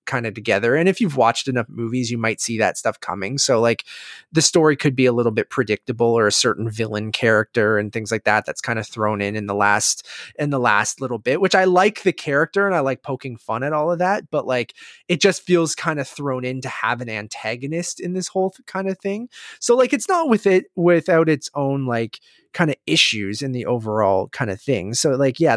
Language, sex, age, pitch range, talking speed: English, male, 20-39, 110-160 Hz, 240 wpm